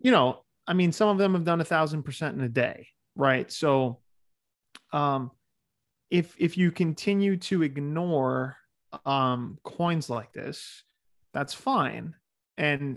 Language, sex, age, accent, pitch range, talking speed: English, male, 30-49, American, 125-155 Hz, 145 wpm